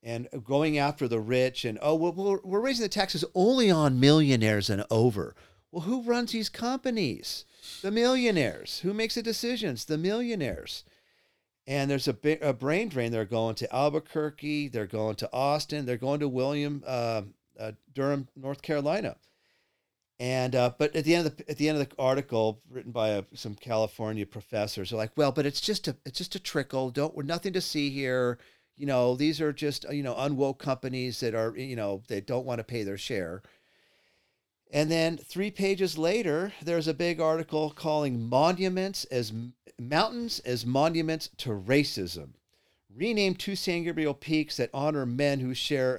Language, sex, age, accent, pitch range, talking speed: English, male, 40-59, American, 120-160 Hz, 180 wpm